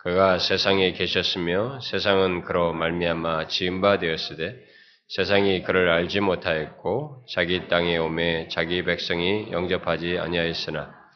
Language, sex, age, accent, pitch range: Korean, male, 20-39, native, 85-100 Hz